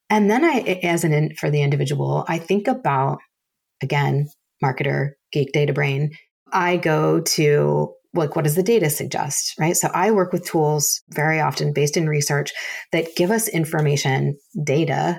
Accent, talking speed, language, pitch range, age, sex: American, 165 wpm, English, 140-170 Hz, 30-49, female